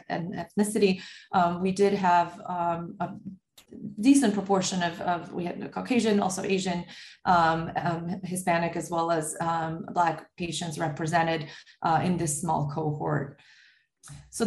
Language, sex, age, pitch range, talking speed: English, female, 30-49, 165-195 Hz, 135 wpm